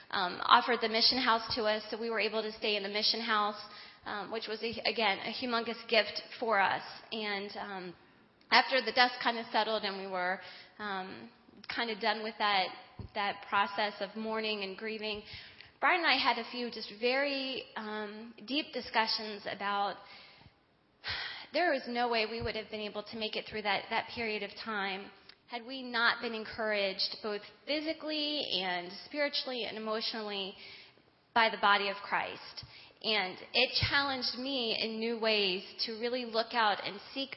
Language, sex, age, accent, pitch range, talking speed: English, female, 20-39, American, 205-235 Hz, 175 wpm